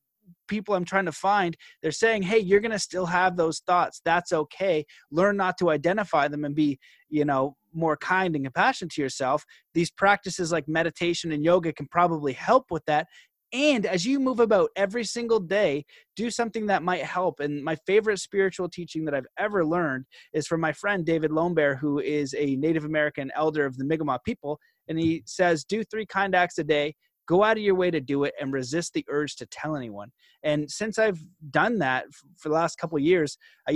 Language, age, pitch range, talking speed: English, 30-49, 145-185 Hz, 210 wpm